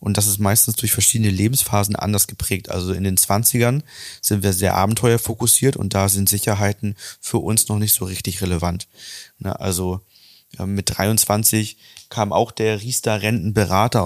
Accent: German